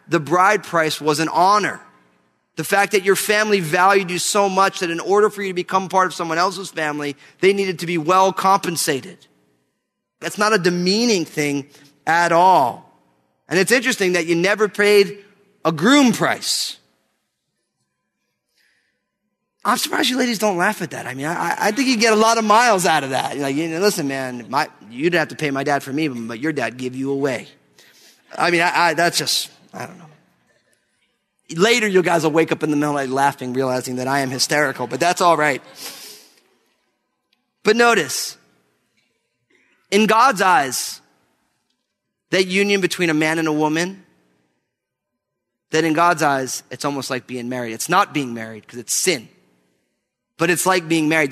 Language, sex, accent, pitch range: English, male, American, 140-195 Hz